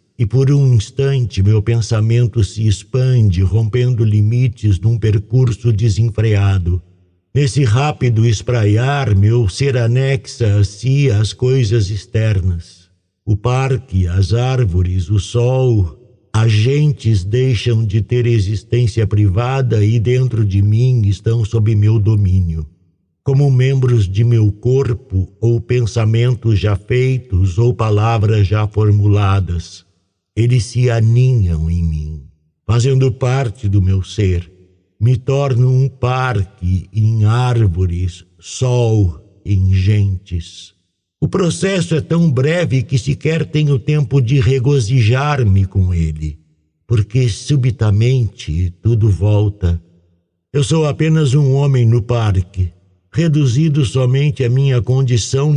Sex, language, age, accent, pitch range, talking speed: male, Portuguese, 60-79, Brazilian, 95-130 Hz, 115 wpm